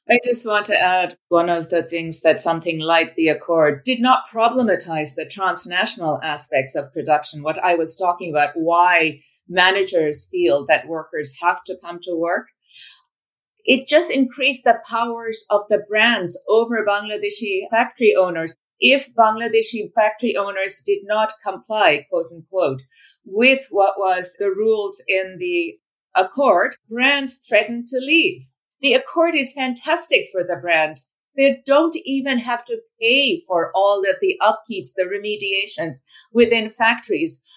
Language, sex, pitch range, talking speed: English, female, 185-265 Hz, 145 wpm